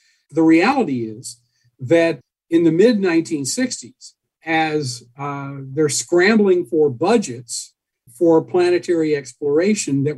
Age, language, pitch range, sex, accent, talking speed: 50-69, Danish, 145-210 Hz, male, American, 100 wpm